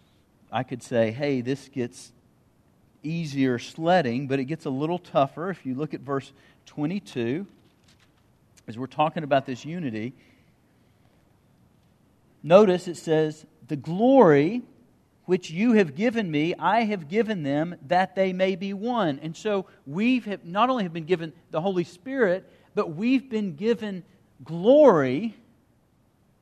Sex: male